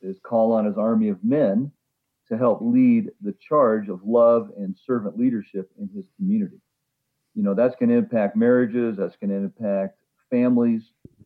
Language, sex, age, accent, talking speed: English, male, 50-69, American, 170 wpm